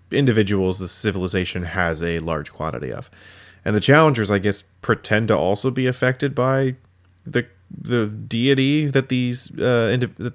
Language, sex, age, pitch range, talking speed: English, male, 20-39, 90-115 Hz, 150 wpm